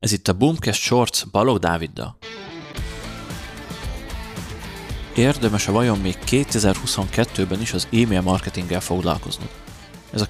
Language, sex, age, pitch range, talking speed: Hungarian, male, 30-49, 95-115 Hz, 110 wpm